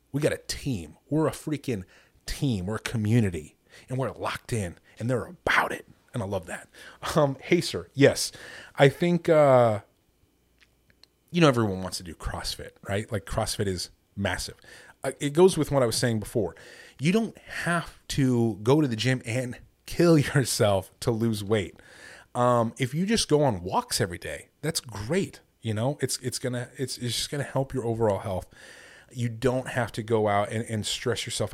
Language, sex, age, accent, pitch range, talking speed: English, male, 30-49, American, 105-135 Hz, 185 wpm